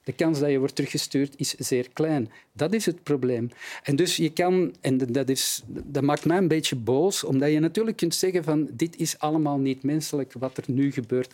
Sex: male